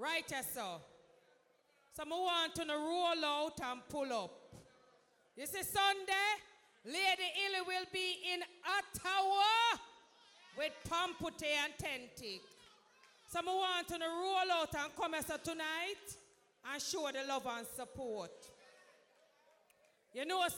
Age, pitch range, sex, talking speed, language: 40-59, 280-370 Hz, female, 135 wpm, English